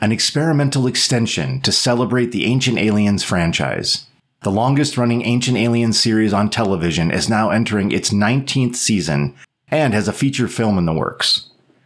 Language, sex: English, male